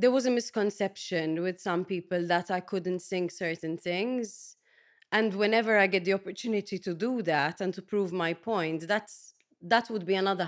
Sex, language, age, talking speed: female, English, 30-49, 185 wpm